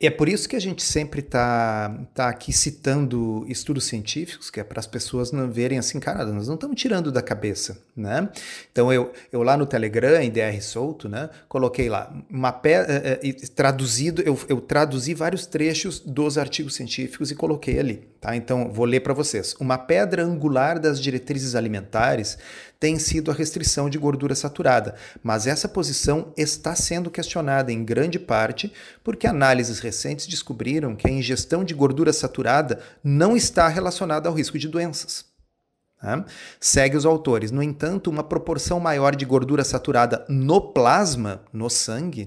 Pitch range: 125-165 Hz